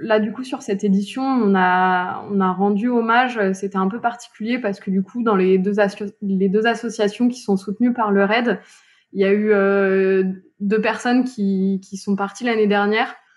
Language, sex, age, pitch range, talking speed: French, female, 20-39, 195-225 Hz, 205 wpm